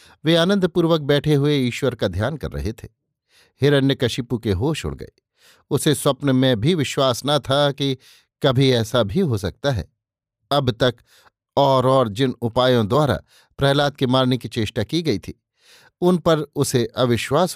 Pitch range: 115-140 Hz